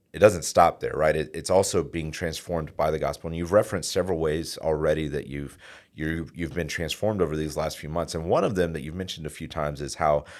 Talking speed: 235 wpm